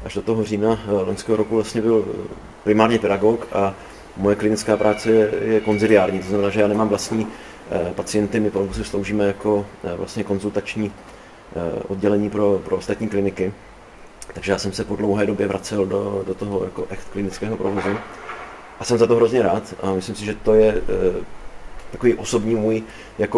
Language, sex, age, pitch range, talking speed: Czech, male, 30-49, 100-120 Hz, 170 wpm